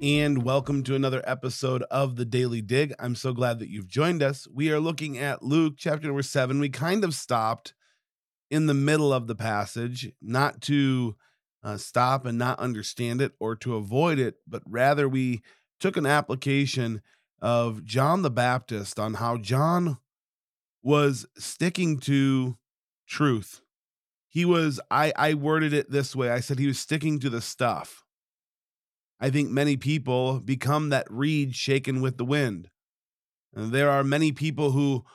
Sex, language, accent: male, English, American